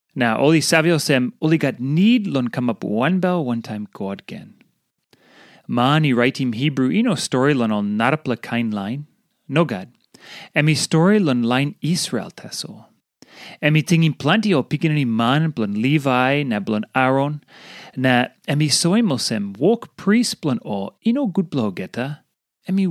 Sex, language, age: male, English, 30-49